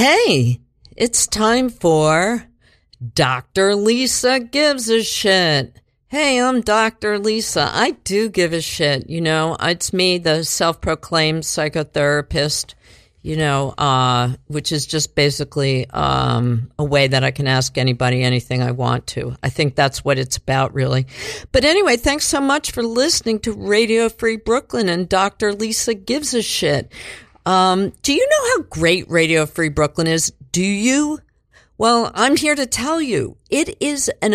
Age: 50-69